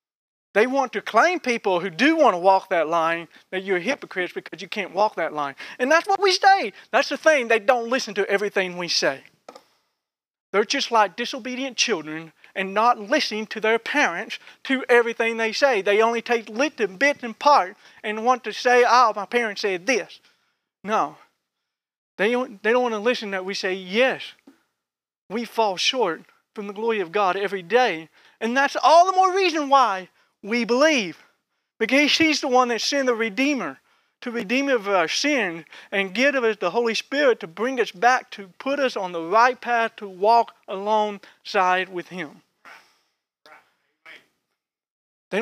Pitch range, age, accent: 185-255 Hz, 40-59, American